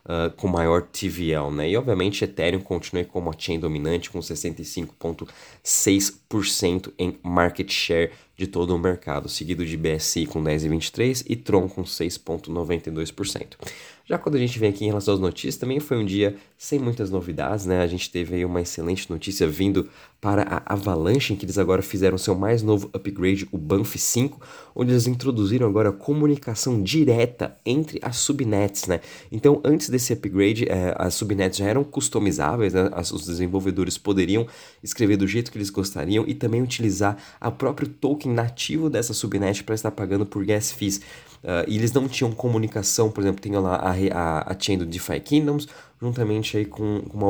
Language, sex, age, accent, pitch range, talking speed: Portuguese, male, 20-39, Brazilian, 90-110 Hz, 175 wpm